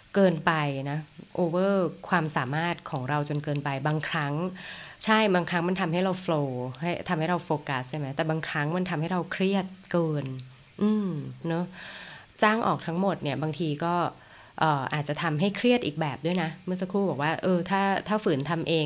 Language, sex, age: Thai, female, 20-39